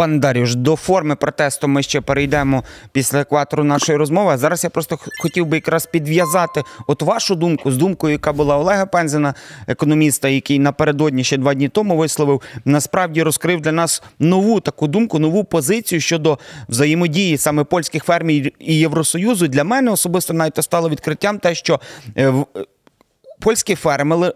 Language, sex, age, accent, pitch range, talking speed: Ukrainian, male, 30-49, native, 145-190 Hz, 155 wpm